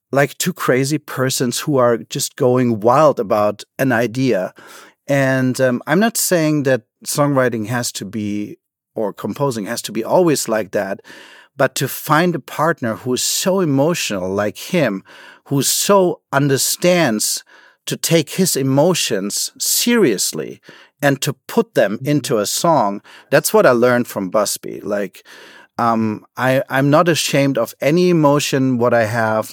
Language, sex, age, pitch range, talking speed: English, male, 40-59, 125-150 Hz, 150 wpm